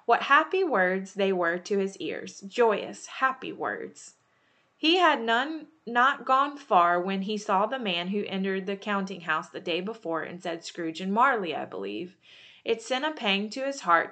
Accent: American